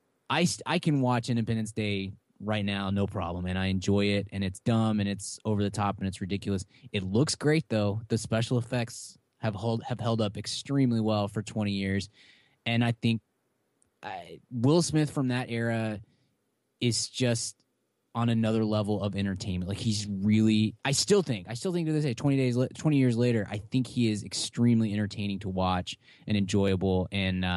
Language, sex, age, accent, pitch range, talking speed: English, male, 20-39, American, 100-125 Hz, 185 wpm